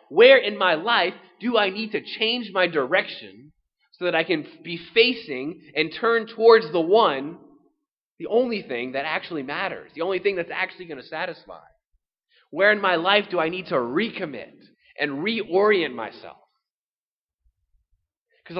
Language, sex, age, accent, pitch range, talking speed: English, male, 20-39, American, 180-225 Hz, 160 wpm